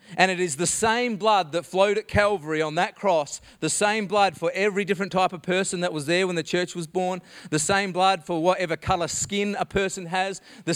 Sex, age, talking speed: male, 40-59, 230 wpm